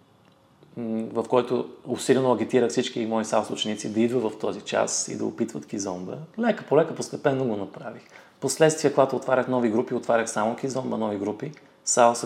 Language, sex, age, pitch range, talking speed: Bulgarian, male, 30-49, 110-130 Hz, 165 wpm